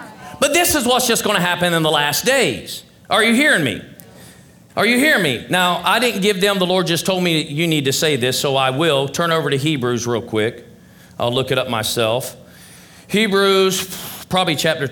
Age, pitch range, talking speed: 40-59, 130-190 Hz, 210 wpm